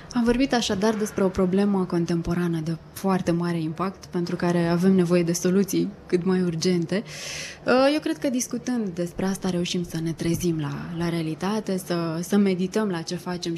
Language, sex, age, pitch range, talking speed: Romanian, female, 20-39, 170-200 Hz, 170 wpm